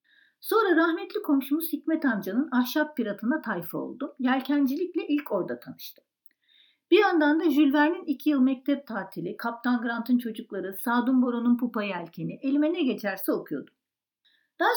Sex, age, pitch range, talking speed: female, 50-69, 230-320 Hz, 135 wpm